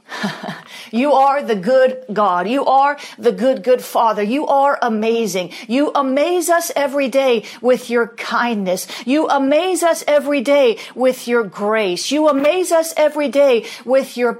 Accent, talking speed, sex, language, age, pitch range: American, 155 wpm, female, English, 40-59, 250-295 Hz